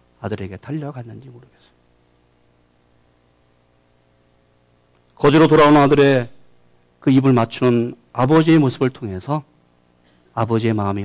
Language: Korean